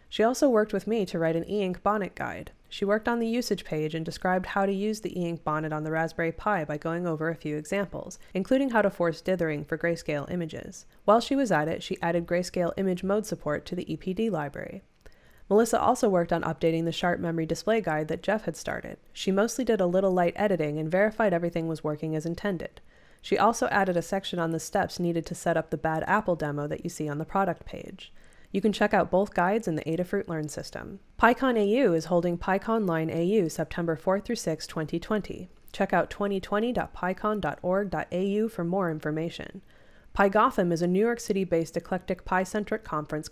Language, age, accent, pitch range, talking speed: English, 20-39, American, 165-205 Hz, 205 wpm